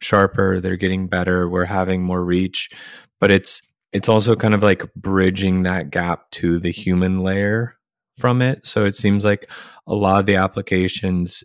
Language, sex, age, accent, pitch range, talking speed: English, male, 20-39, American, 90-100 Hz, 175 wpm